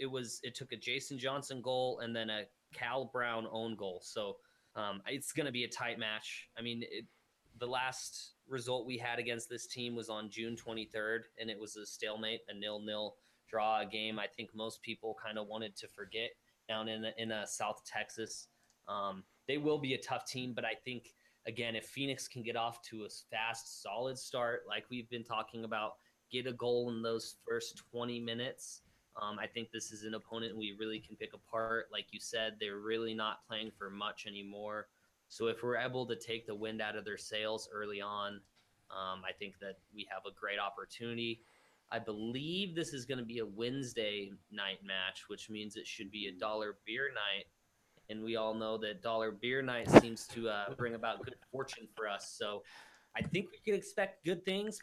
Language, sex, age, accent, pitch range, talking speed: English, male, 20-39, American, 110-125 Hz, 205 wpm